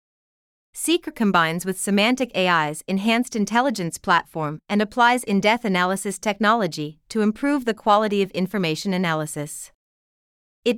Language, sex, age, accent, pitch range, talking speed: English, female, 30-49, American, 175-230 Hz, 115 wpm